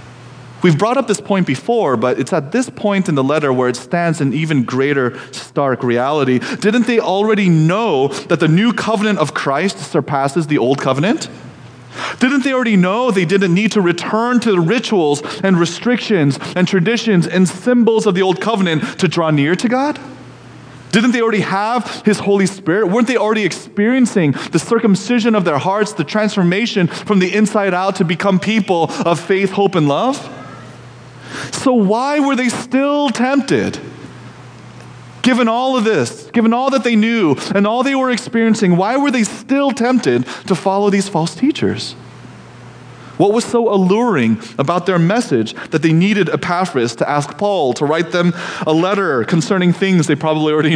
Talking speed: 175 wpm